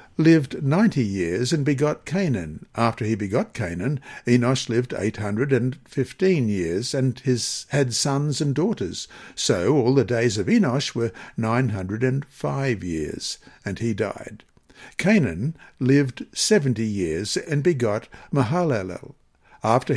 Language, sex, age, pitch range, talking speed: English, male, 60-79, 110-145 Hz, 135 wpm